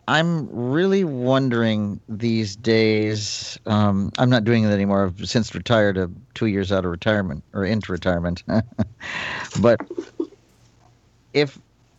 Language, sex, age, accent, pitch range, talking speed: English, male, 50-69, American, 100-120 Hz, 120 wpm